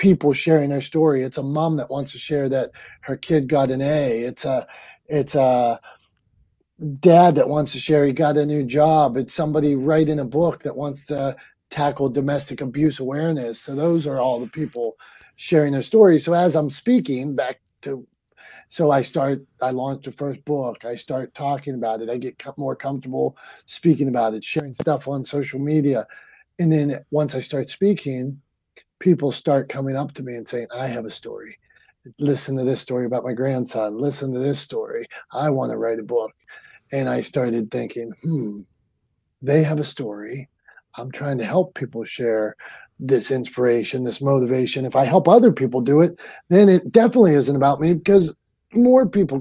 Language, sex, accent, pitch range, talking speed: English, male, American, 130-160 Hz, 185 wpm